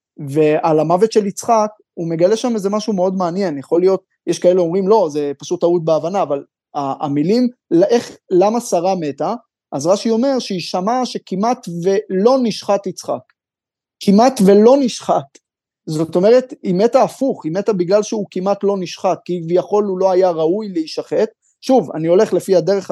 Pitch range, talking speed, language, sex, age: 155-205 Hz, 160 wpm, Hebrew, male, 30-49